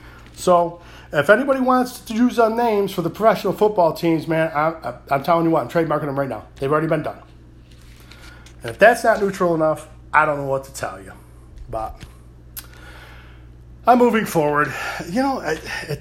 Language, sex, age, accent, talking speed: English, male, 40-59, American, 185 wpm